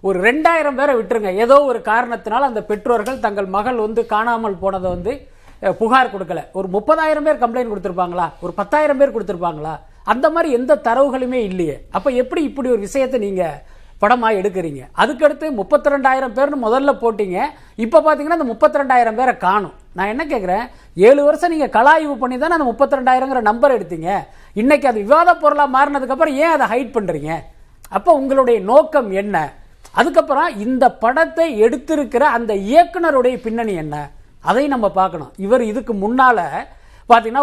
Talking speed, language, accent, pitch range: 140 wpm, Tamil, native, 200-275 Hz